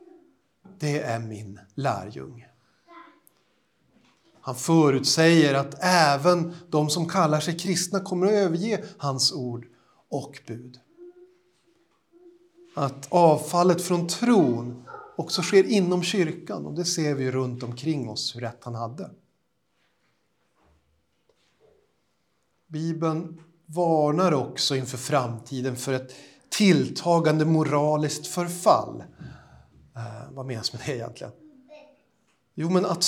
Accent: native